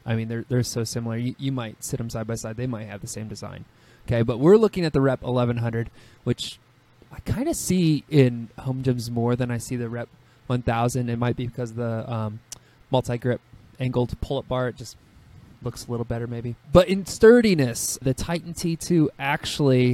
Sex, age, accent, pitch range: male, 20-39, American, 120-140 Hz